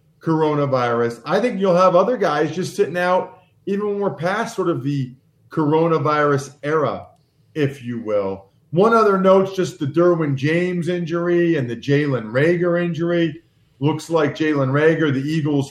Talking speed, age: 155 wpm, 40-59